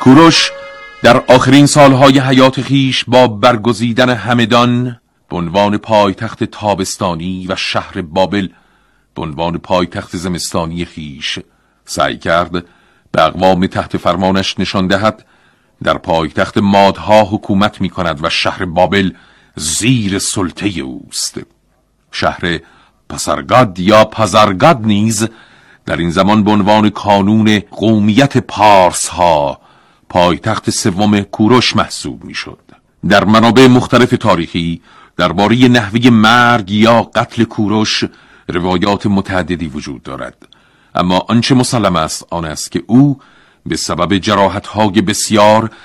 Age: 50-69